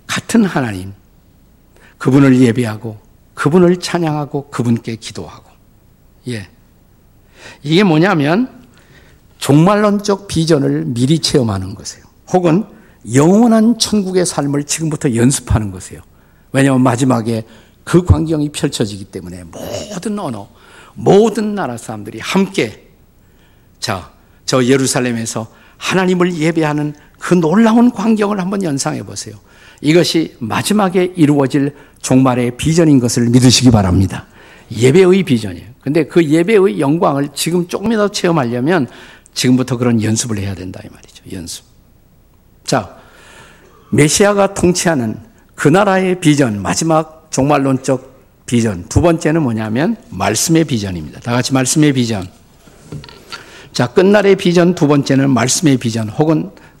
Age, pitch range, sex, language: 50-69, 115-170 Hz, male, Korean